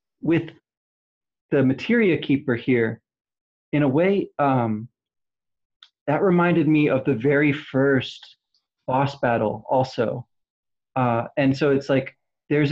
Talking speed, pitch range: 120 wpm, 120-140 Hz